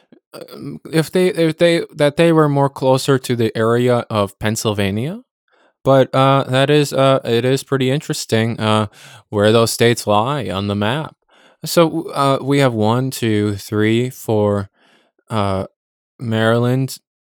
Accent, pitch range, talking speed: American, 110-140 Hz, 145 wpm